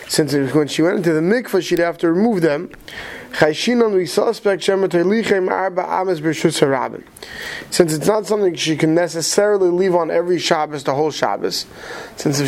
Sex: male